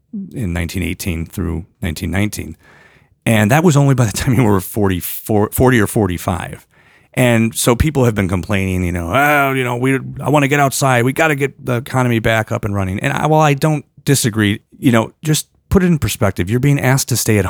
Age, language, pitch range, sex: 40-59, English, 95-125 Hz, male